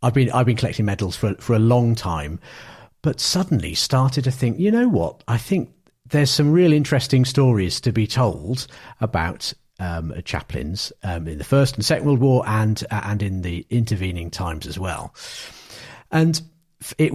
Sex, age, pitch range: male, 50-69, 95-130 Hz